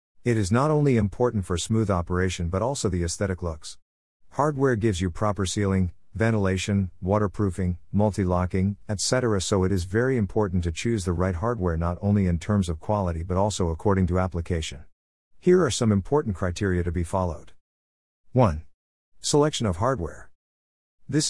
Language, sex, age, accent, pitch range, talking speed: English, male, 50-69, American, 85-110 Hz, 160 wpm